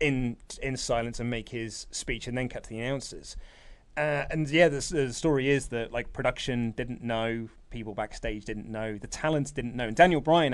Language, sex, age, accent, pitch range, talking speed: English, male, 30-49, British, 110-145 Hz, 205 wpm